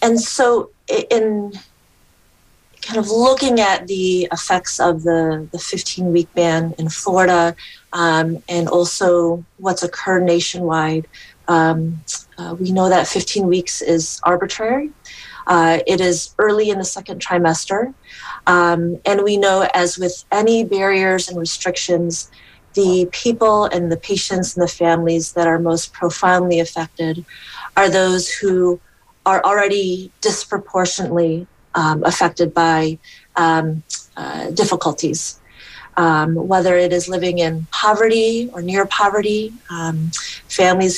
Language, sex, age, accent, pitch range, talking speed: English, female, 30-49, American, 170-195 Hz, 125 wpm